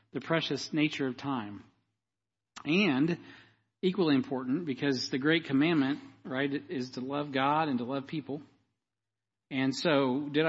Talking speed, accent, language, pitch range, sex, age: 135 wpm, American, English, 115-150 Hz, male, 40-59